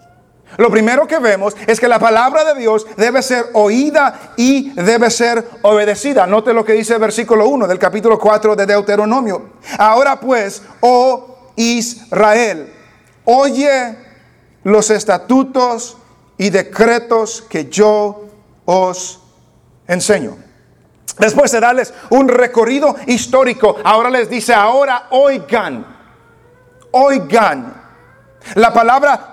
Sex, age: male, 40-59